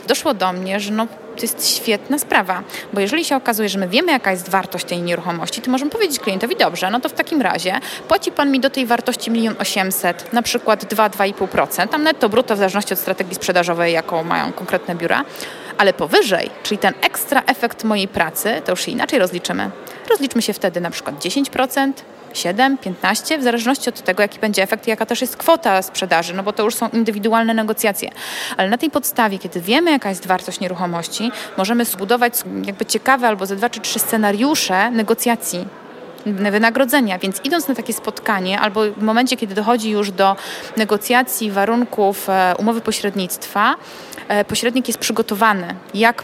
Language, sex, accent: Polish, female, native